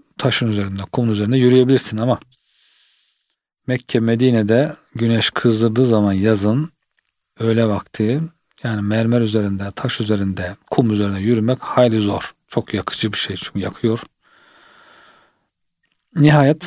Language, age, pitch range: Turkish, 40-59, 105-130 Hz